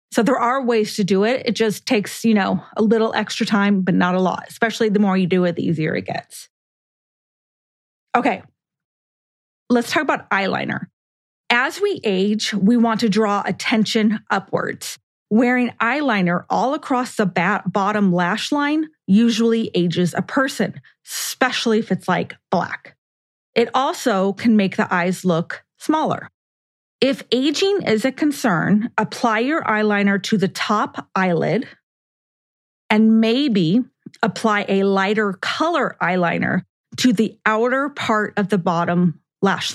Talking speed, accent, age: 145 wpm, American, 30-49